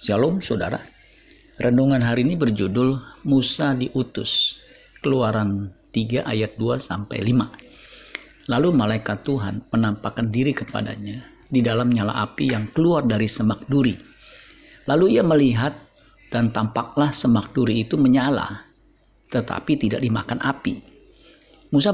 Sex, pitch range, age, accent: male, 110-135 Hz, 50-69, native